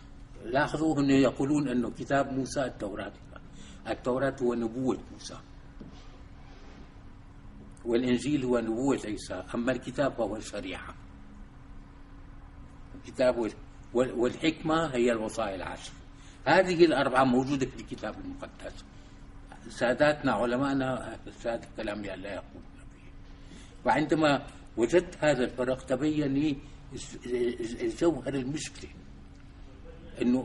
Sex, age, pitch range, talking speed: male, 60-79, 120-140 Hz, 85 wpm